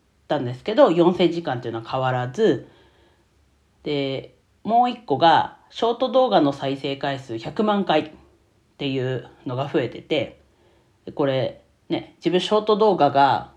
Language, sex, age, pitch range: Japanese, female, 40-59, 125-180 Hz